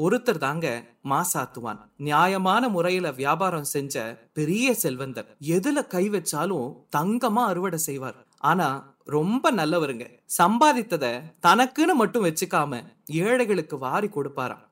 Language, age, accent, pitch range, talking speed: Tamil, 30-49, native, 150-235 Hz, 60 wpm